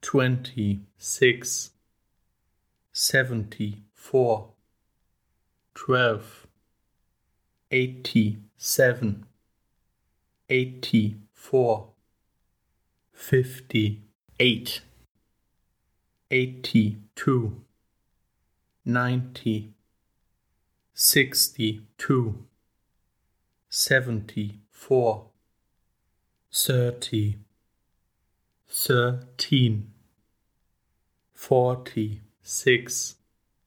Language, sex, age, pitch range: English, male, 50-69, 105-130 Hz